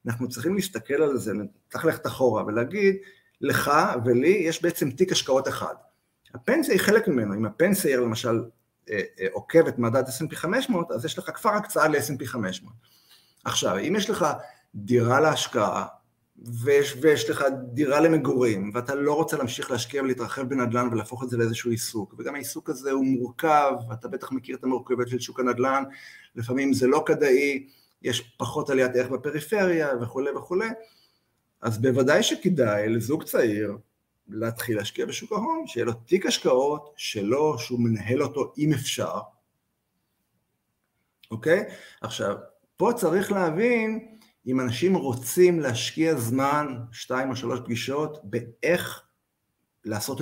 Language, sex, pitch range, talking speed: Hebrew, male, 120-155 Hz, 140 wpm